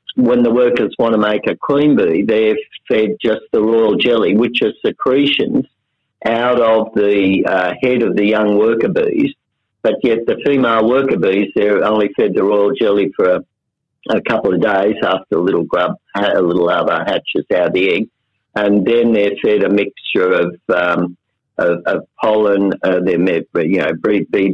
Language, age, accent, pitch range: English, 50-69, Australian, 105-130 Hz